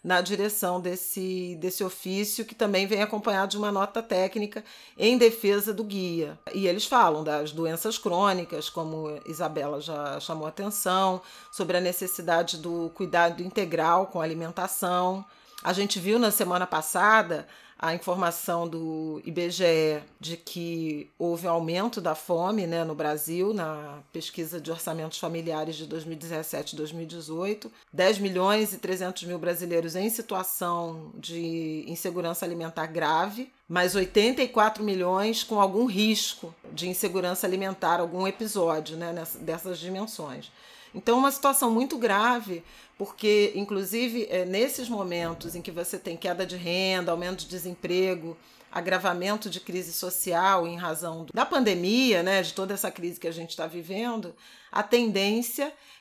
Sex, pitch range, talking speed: female, 170-205 Hz, 140 wpm